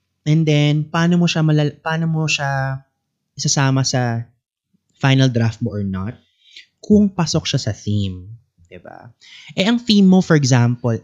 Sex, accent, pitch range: male, Filipino, 115-165 Hz